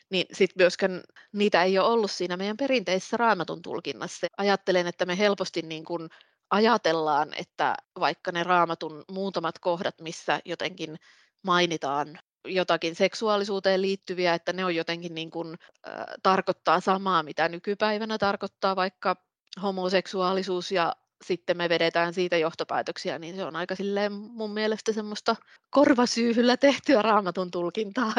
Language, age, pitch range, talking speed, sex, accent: Finnish, 20-39, 170-195 Hz, 130 wpm, female, native